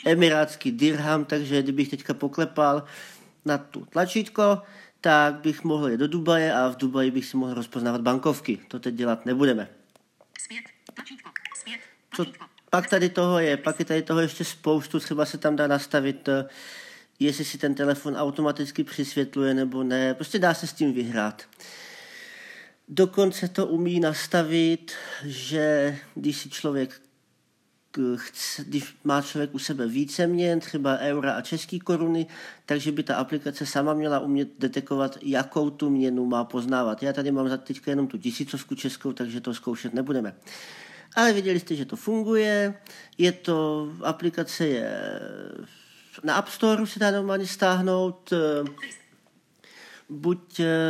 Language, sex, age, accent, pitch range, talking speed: Czech, male, 40-59, native, 140-175 Hz, 145 wpm